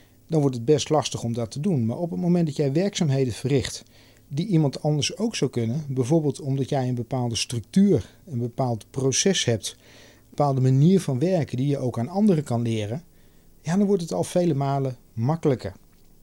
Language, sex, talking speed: Dutch, male, 195 wpm